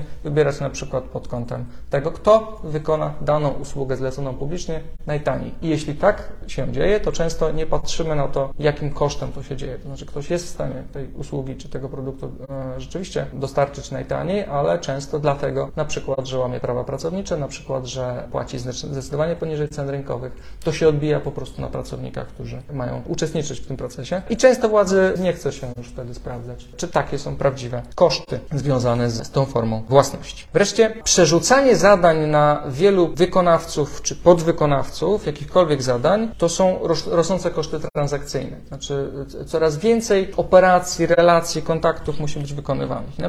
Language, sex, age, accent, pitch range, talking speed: Polish, male, 40-59, native, 140-175 Hz, 160 wpm